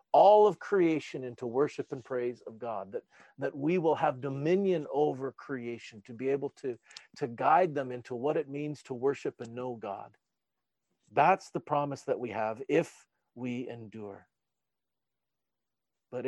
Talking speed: 160 wpm